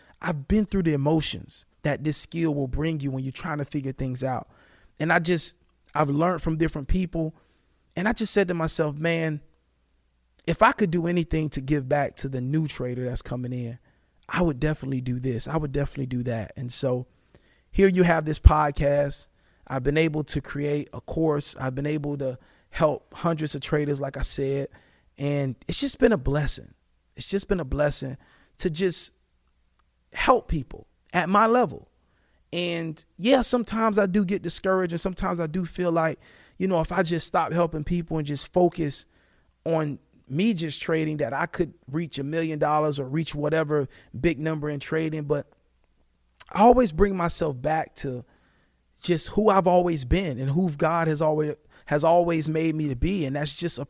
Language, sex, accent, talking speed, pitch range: English, male, American, 190 wpm, 135-170 Hz